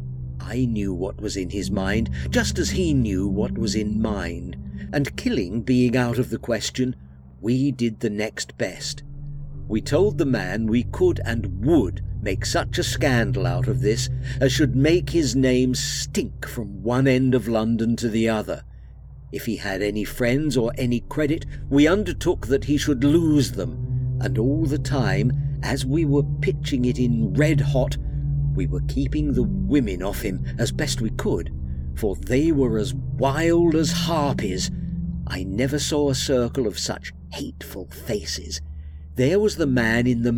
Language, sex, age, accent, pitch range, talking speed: English, male, 50-69, British, 85-140 Hz, 170 wpm